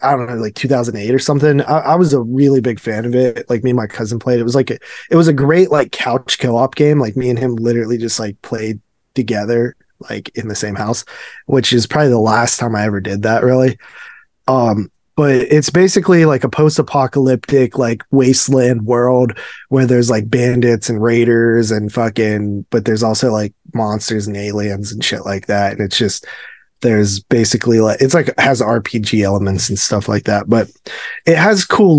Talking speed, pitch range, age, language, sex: 200 wpm, 110-135 Hz, 20-39, English, male